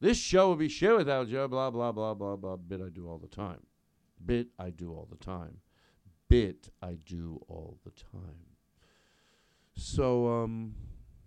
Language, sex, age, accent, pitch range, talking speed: English, male, 50-69, American, 95-150 Hz, 175 wpm